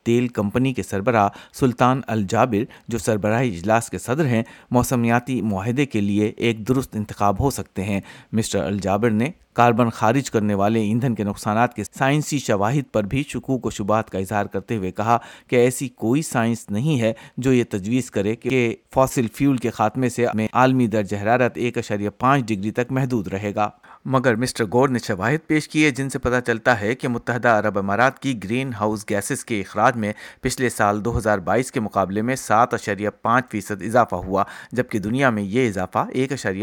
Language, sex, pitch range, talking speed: Urdu, male, 105-125 Hz, 180 wpm